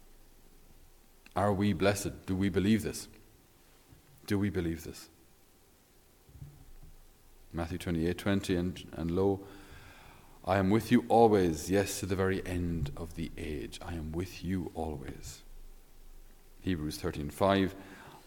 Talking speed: 125 wpm